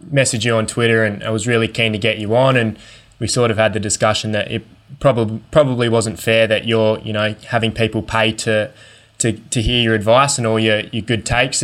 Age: 20-39